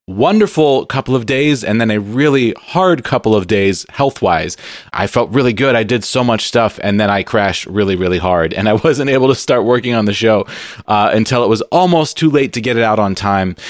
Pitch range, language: 105-140 Hz, English